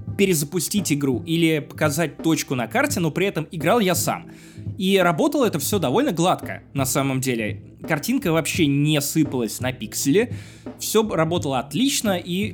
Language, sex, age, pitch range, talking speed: Russian, male, 20-39, 130-185 Hz, 155 wpm